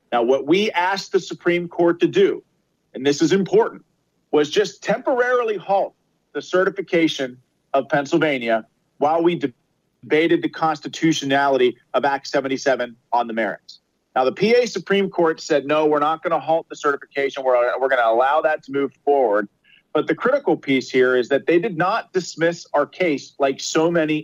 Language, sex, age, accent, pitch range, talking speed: English, male, 40-59, American, 130-170 Hz, 175 wpm